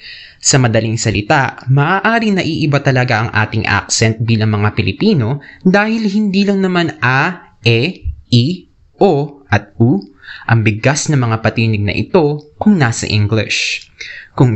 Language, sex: Filipino, male